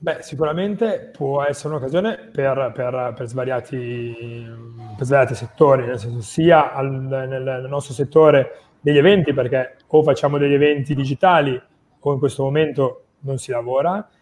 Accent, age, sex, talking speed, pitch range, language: native, 30-49, male, 145 wpm, 130-155 Hz, Italian